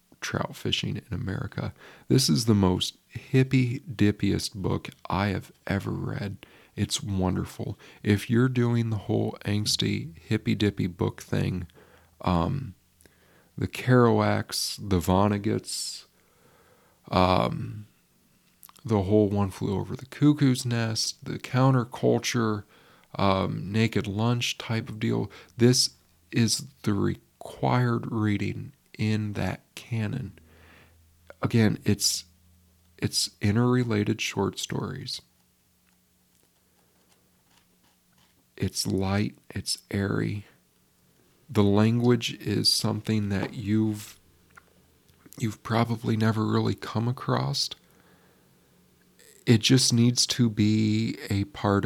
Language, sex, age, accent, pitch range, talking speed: English, male, 40-59, American, 95-120 Hz, 100 wpm